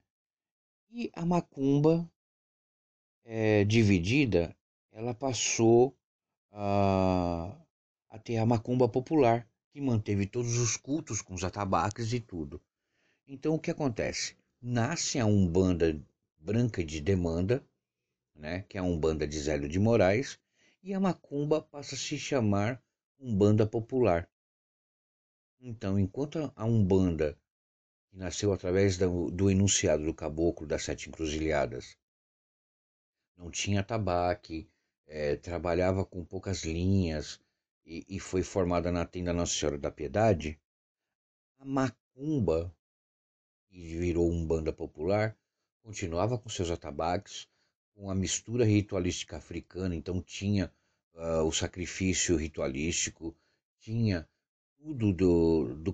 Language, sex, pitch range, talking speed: Portuguese, male, 85-115 Hz, 120 wpm